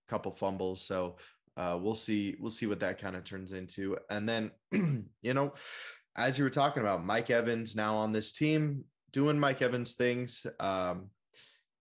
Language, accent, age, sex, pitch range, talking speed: English, American, 20-39, male, 95-130 Hz, 170 wpm